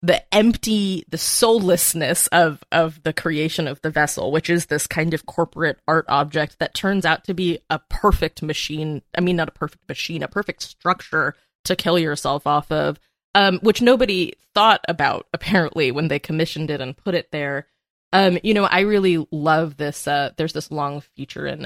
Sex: female